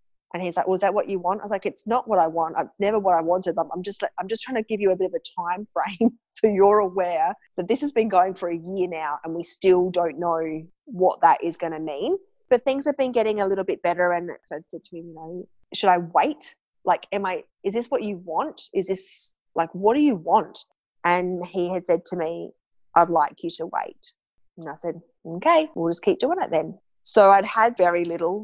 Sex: female